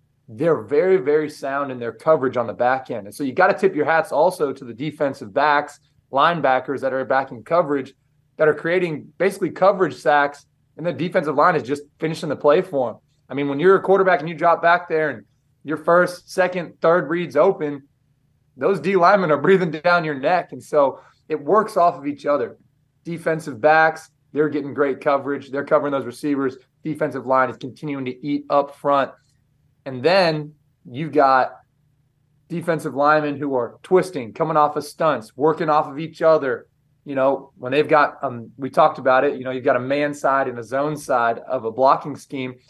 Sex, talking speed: male, 200 wpm